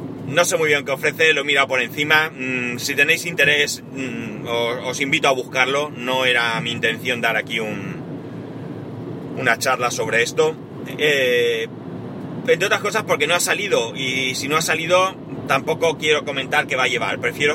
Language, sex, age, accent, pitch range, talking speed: Spanish, male, 30-49, Spanish, 125-150 Hz, 170 wpm